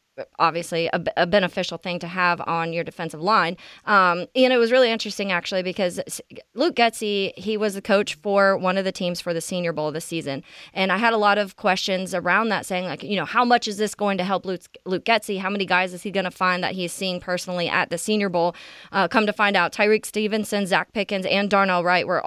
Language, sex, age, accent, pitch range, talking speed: English, female, 20-39, American, 180-210 Hz, 240 wpm